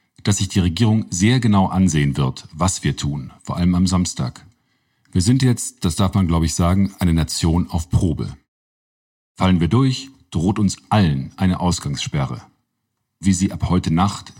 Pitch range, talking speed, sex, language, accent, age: 85-105 Hz, 170 wpm, male, German, German, 50-69